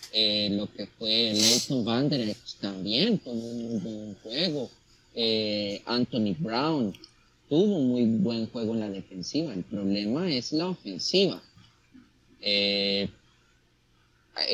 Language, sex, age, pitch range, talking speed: Spanish, male, 30-49, 110-180 Hz, 120 wpm